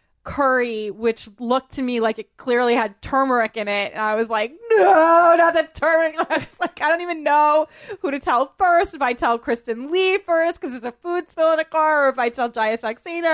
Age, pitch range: 20-39, 200-275 Hz